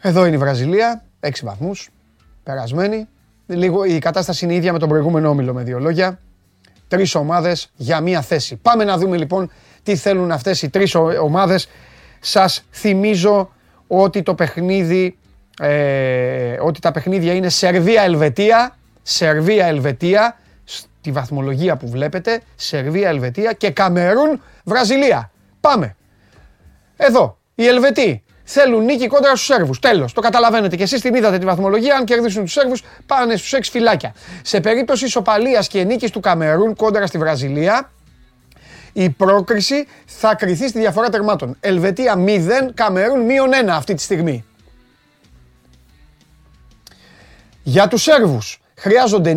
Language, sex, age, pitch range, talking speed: Greek, male, 30-49, 155-225 Hz, 125 wpm